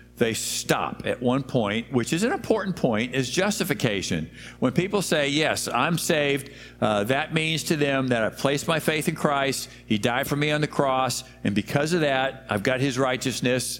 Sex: male